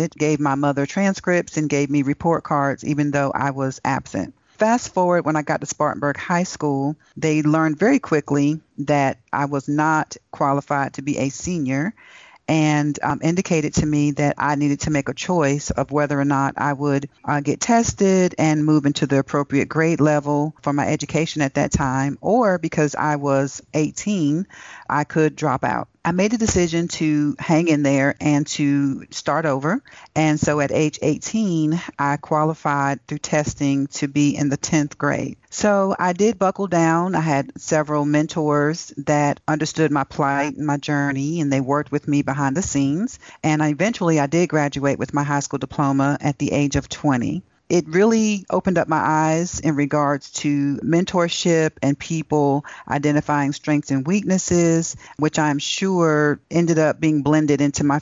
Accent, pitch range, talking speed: American, 145-160 Hz, 175 wpm